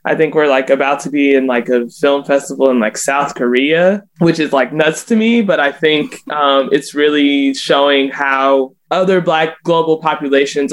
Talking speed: 190 wpm